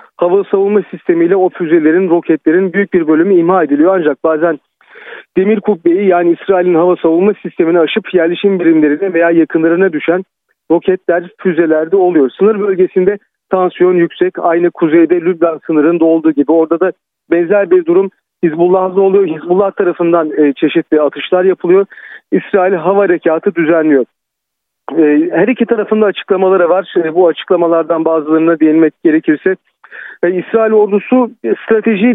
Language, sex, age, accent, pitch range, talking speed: Turkish, male, 40-59, native, 165-200 Hz, 130 wpm